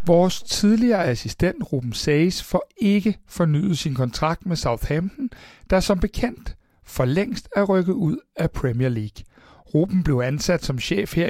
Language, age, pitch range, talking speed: Danish, 60-79, 145-205 Hz, 155 wpm